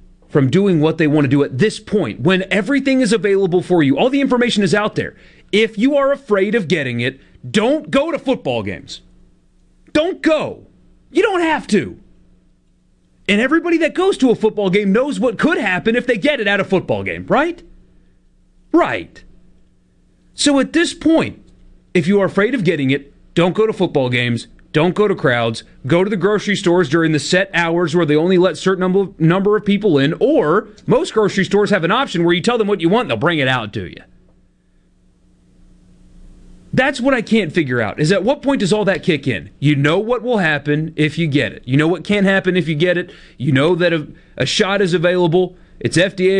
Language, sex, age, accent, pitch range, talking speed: English, male, 30-49, American, 150-215 Hz, 215 wpm